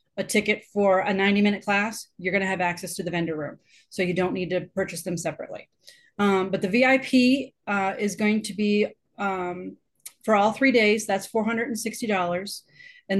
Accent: American